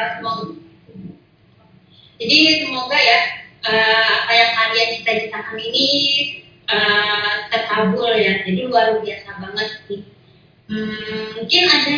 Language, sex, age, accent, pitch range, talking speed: Indonesian, female, 20-39, native, 225-270 Hz, 110 wpm